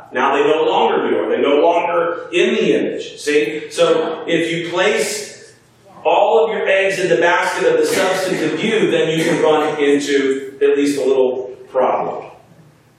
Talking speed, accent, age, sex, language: 180 wpm, American, 40-59, male, English